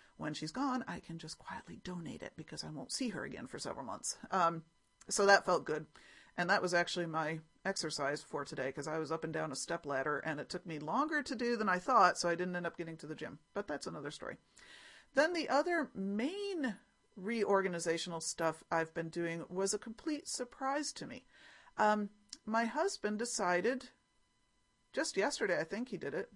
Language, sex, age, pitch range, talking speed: English, female, 40-59, 165-225 Hz, 200 wpm